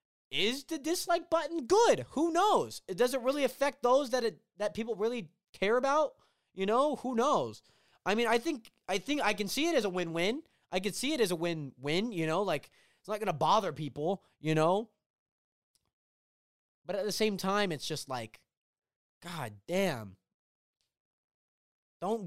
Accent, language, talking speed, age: American, English, 175 wpm, 20-39